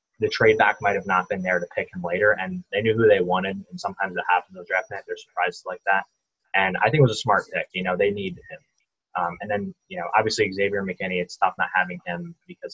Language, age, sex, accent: English, 20-39, male, American